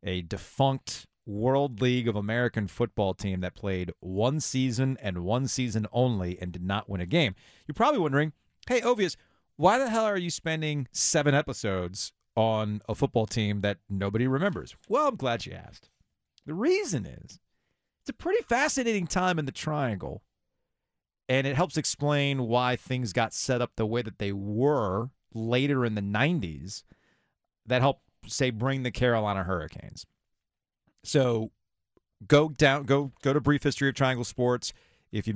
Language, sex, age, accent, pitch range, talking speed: English, male, 30-49, American, 100-140 Hz, 165 wpm